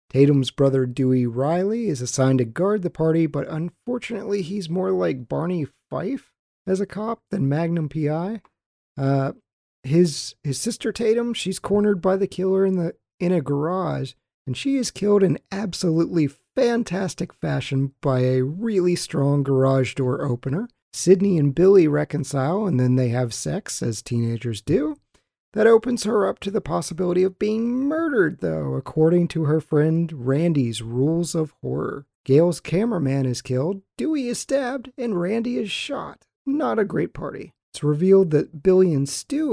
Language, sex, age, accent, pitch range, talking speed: English, male, 40-59, American, 135-205 Hz, 160 wpm